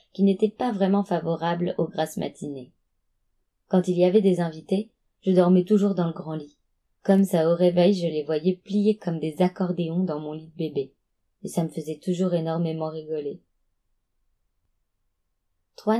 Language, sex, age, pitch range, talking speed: French, female, 20-39, 150-190 Hz, 170 wpm